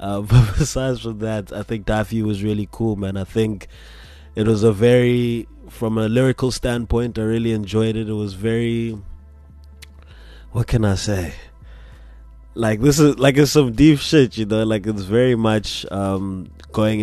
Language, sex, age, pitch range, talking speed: English, male, 20-39, 95-110 Hz, 175 wpm